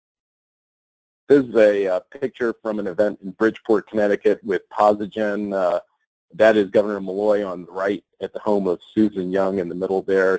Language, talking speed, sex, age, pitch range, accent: English, 180 wpm, male, 40-59, 100-130 Hz, American